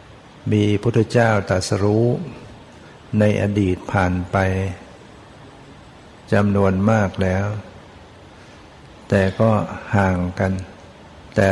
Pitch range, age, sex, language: 95-110 Hz, 60-79, male, Thai